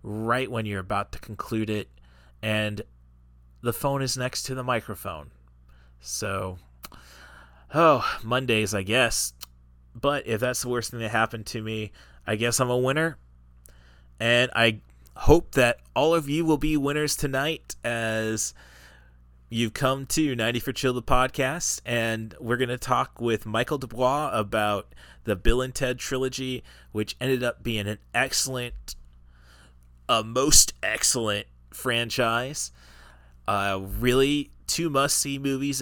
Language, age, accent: English, 30-49, American